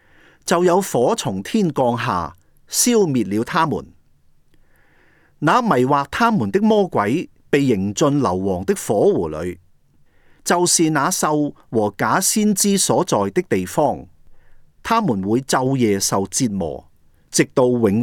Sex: male